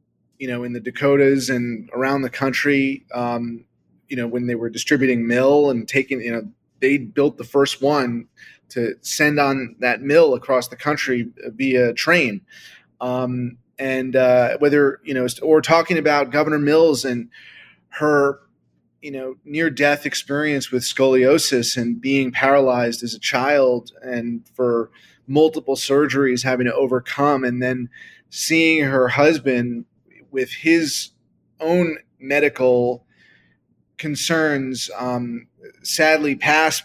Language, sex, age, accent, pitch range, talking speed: English, male, 30-49, American, 120-145 Hz, 130 wpm